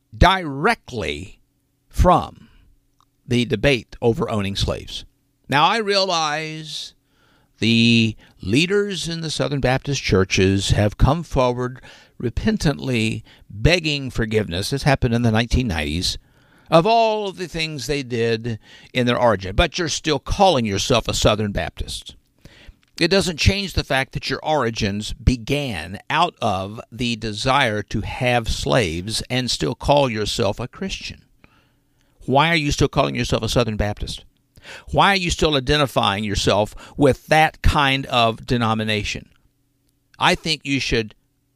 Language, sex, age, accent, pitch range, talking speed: English, male, 60-79, American, 110-140 Hz, 130 wpm